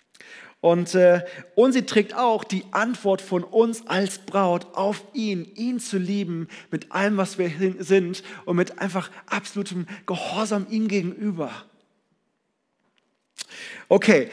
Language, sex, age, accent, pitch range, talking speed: German, male, 40-59, German, 175-210 Hz, 120 wpm